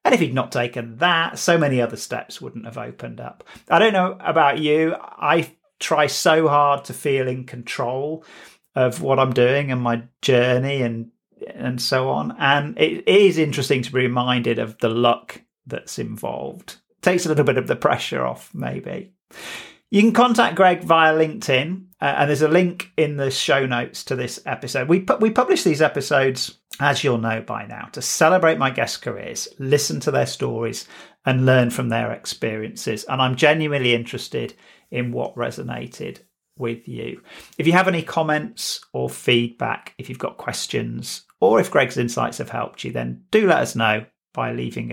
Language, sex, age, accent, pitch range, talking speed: English, male, 40-59, British, 120-160 Hz, 185 wpm